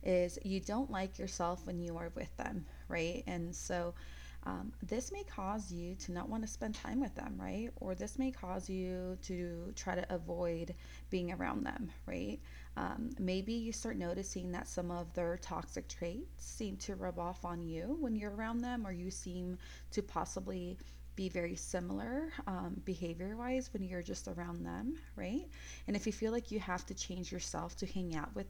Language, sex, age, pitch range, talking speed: English, female, 20-39, 175-220 Hz, 195 wpm